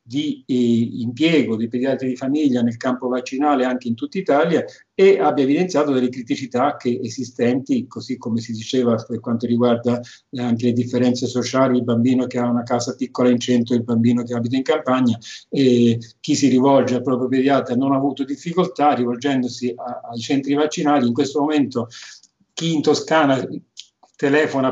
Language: Italian